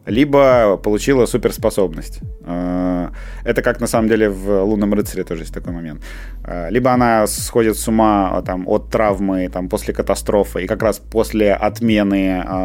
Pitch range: 95-120 Hz